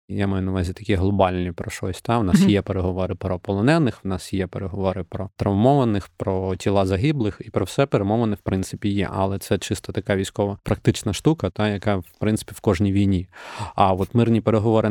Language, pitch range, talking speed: Ukrainian, 100-115 Hz, 195 wpm